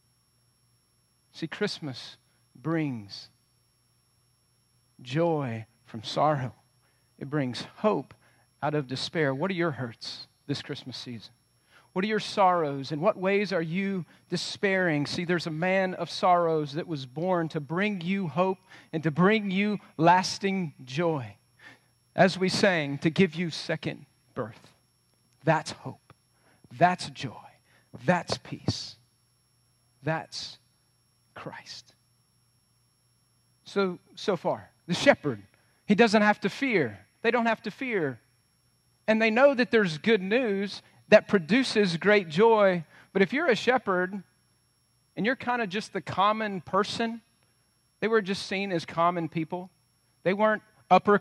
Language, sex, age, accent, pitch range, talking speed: English, male, 40-59, American, 130-195 Hz, 135 wpm